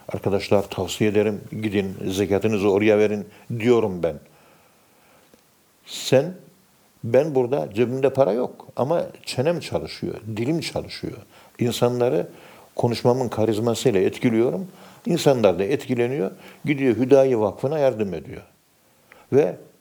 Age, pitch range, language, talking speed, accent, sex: 60-79, 100-125 Hz, Turkish, 100 wpm, native, male